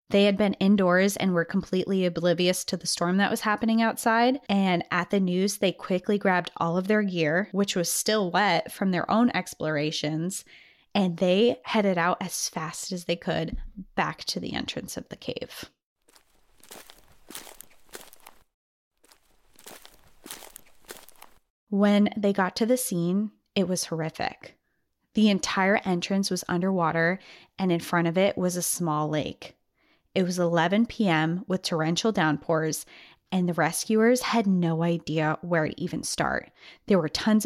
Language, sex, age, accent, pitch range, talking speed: English, female, 20-39, American, 170-205 Hz, 150 wpm